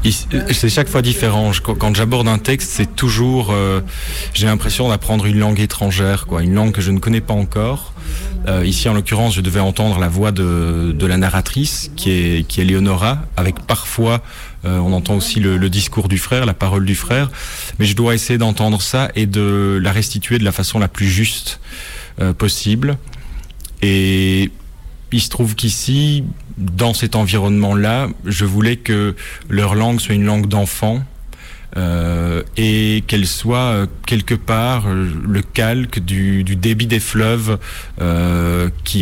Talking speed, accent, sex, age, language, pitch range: 170 wpm, French, male, 40-59, French, 95-110 Hz